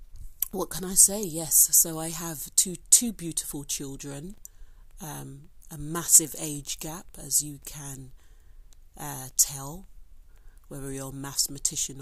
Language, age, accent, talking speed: English, 40-59, British, 130 wpm